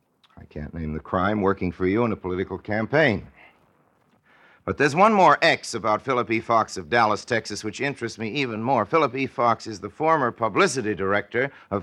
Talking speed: 195 wpm